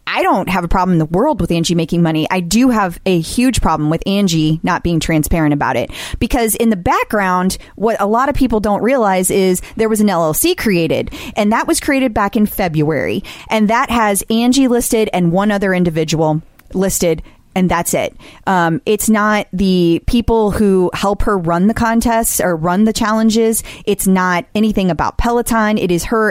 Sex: female